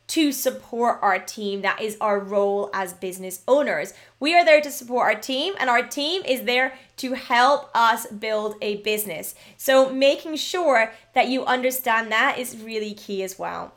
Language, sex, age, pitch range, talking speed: English, female, 20-39, 215-280 Hz, 180 wpm